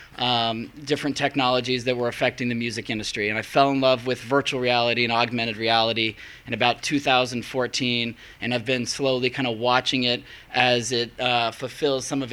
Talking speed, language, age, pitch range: 180 wpm, English, 20-39, 125-145 Hz